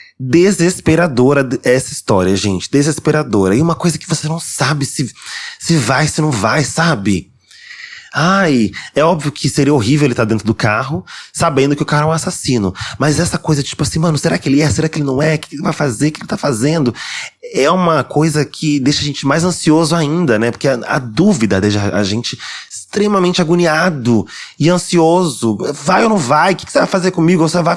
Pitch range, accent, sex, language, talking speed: 115-165 Hz, Brazilian, male, Portuguese, 210 wpm